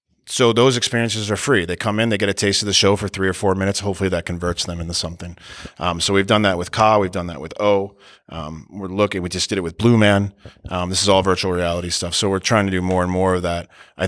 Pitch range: 90-105 Hz